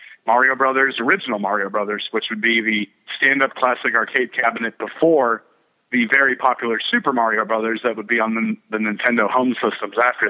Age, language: 30-49, English